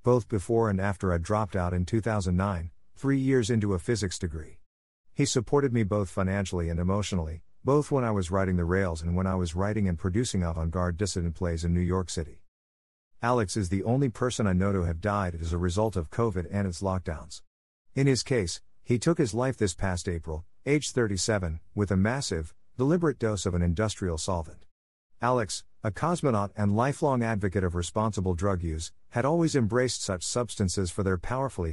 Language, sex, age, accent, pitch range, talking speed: English, male, 50-69, American, 85-115 Hz, 190 wpm